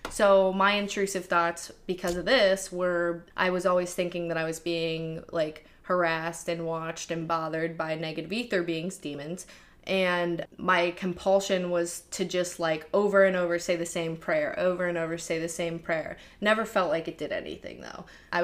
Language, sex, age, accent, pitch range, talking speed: English, female, 20-39, American, 165-185 Hz, 180 wpm